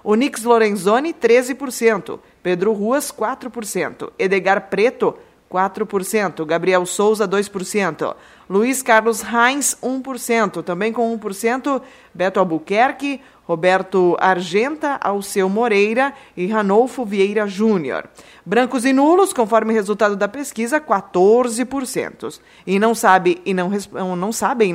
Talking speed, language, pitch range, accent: 110 wpm, Portuguese, 195-250 Hz, Brazilian